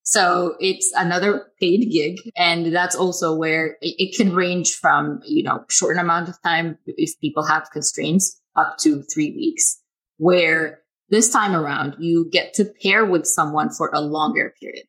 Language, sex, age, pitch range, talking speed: English, female, 20-39, 155-195 Hz, 170 wpm